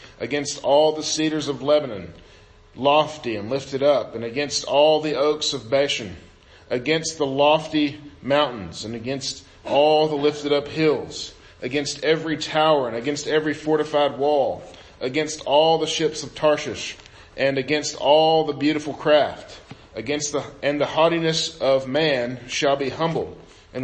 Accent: American